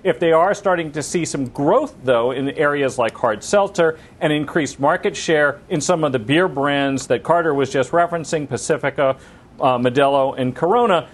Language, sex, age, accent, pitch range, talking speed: English, male, 40-59, American, 135-170 Hz, 185 wpm